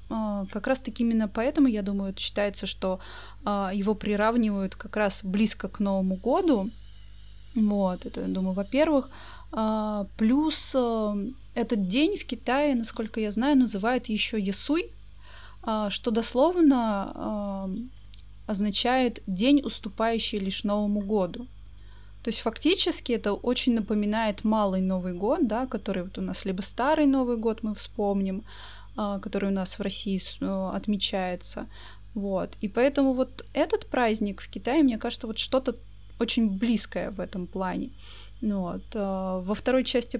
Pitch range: 195-240 Hz